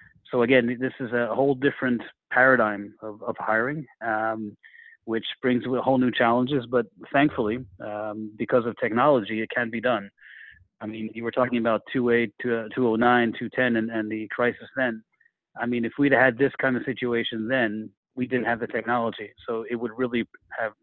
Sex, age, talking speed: male, 30-49, 180 wpm